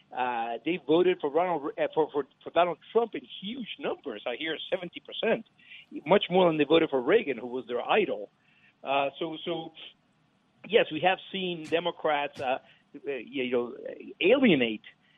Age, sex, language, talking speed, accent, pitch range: 50-69, male, English, 160 wpm, American, 145-195 Hz